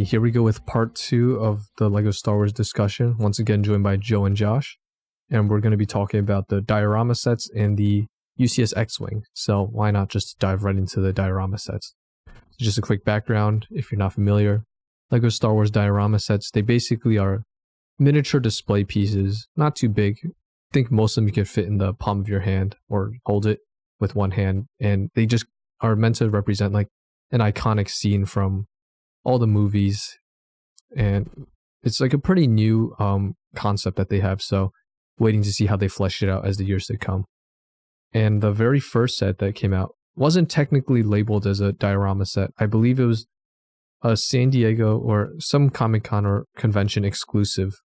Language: English